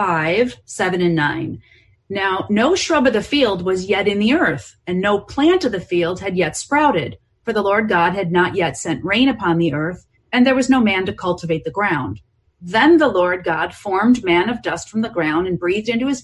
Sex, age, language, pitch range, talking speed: female, 40-59, English, 175-240 Hz, 220 wpm